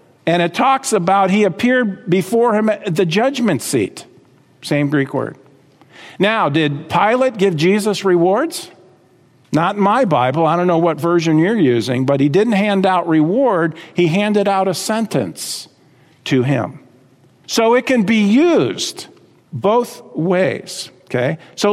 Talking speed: 150 wpm